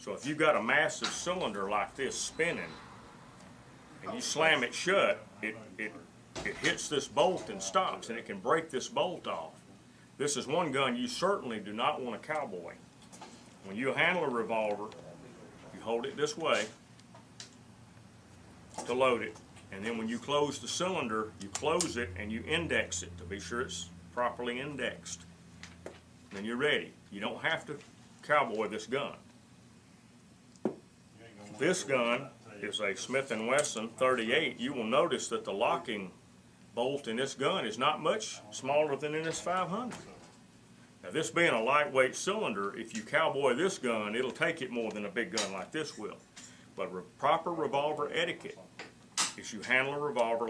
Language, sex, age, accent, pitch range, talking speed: English, male, 40-59, American, 105-145 Hz, 170 wpm